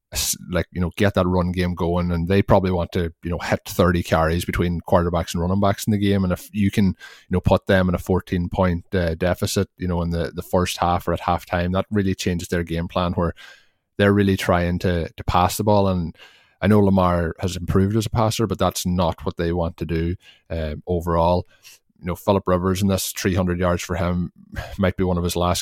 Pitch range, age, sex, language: 90-100 Hz, 20-39, male, English